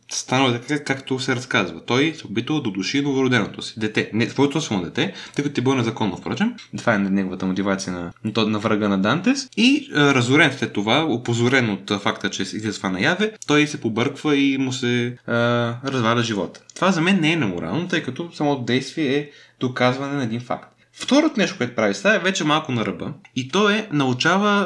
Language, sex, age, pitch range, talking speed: Bulgarian, male, 20-39, 115-150 Hz, 200 wpm